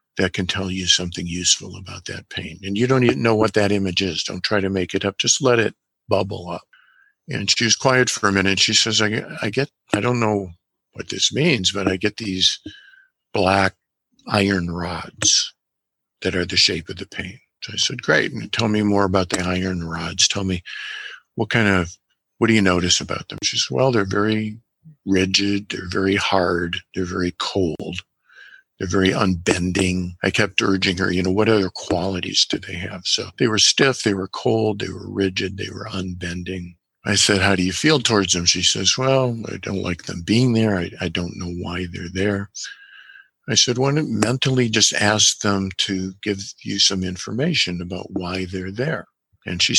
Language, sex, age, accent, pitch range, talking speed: English, male, 50-69, American, 90-110 Hz, 200 wpm